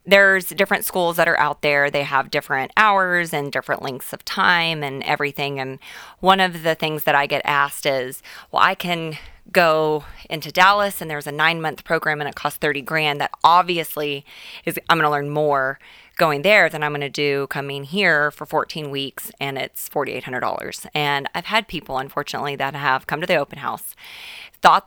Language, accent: English, American